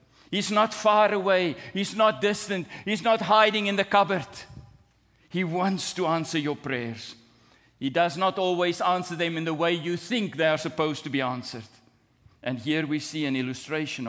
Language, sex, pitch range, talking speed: English, male, 135-210 Hz, 180 wpm